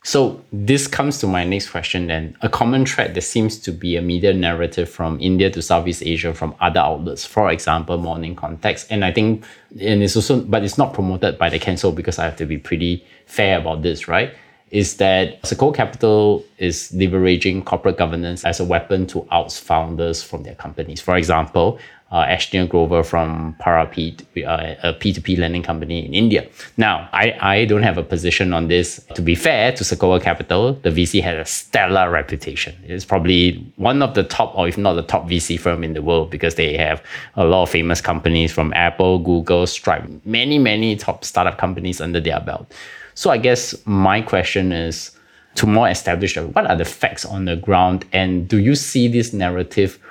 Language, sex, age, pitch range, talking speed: English, male, 20-39, 85-100 Hz, 195 wpm